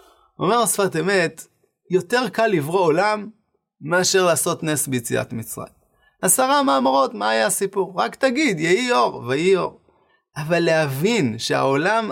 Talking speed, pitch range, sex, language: 130 wpm, 145-205 Hz, male, English